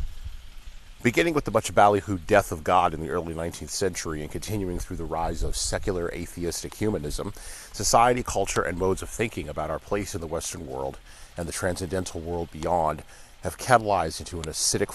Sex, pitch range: male, 80-100 Hz